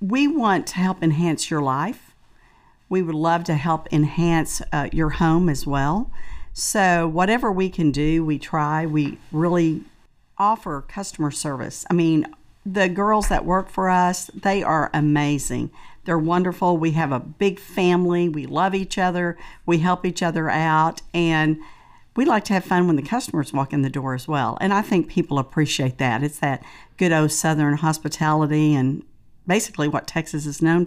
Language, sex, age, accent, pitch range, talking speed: English, female, 50-69, American, 150-175 Hz, 175 wpm